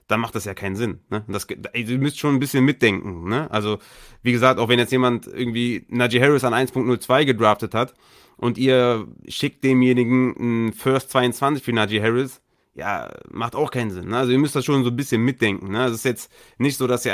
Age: 30-49